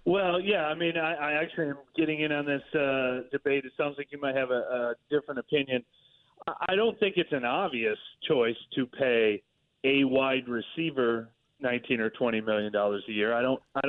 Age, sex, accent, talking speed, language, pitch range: 30-49, male, American, 200 wpm, English, 120-145 Hz